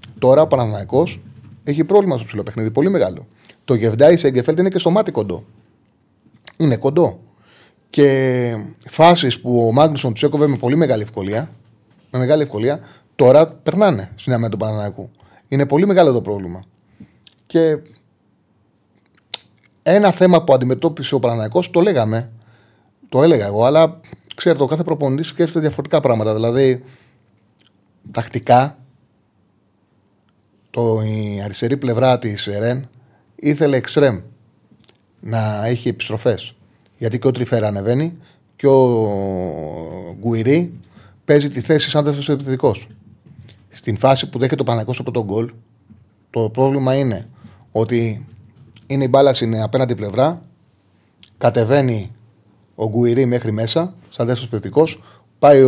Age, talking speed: 30-49, 125 wpm